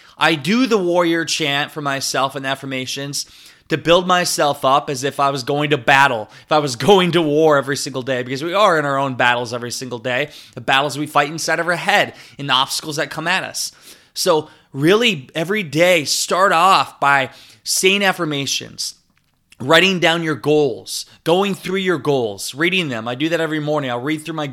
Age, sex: 20-39, male